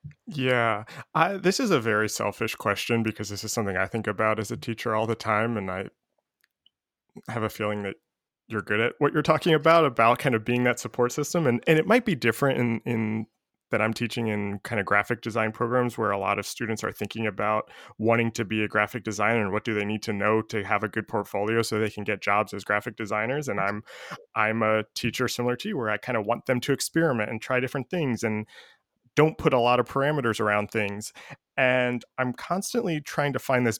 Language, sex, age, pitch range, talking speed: English, male, 20-39, 110-125 Hz, 225 wpm